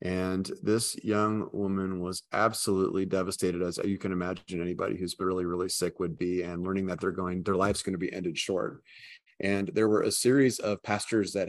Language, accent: English, American